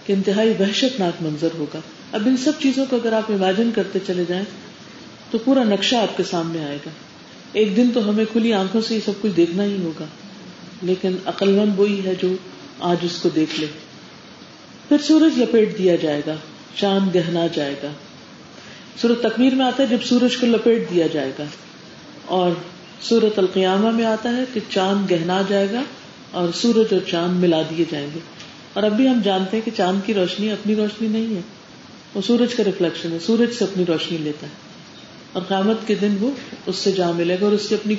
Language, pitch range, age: Urdu, 175-225 Hz, 40-59